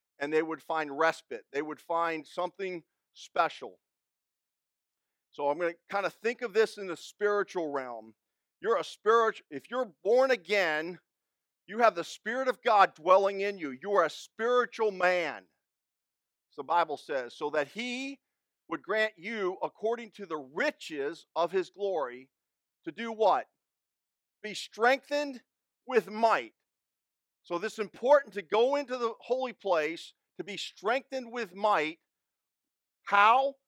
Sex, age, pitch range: male, 50-69, 175-245 Hz